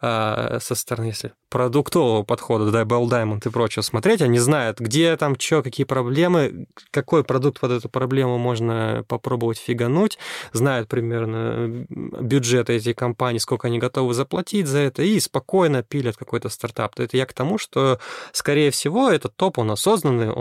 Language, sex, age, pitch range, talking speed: Russian, male, 20-39, 115-130 Hz, 160 wpm